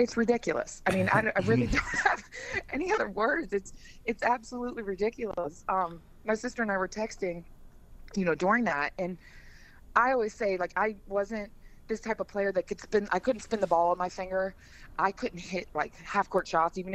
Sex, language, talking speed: female, English, 200 wpm